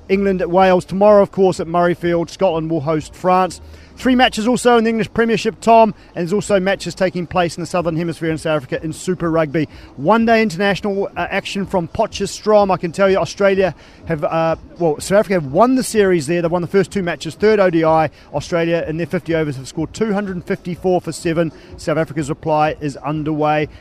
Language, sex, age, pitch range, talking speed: English, male, 40-59, 160-195 Hz, 205 wpm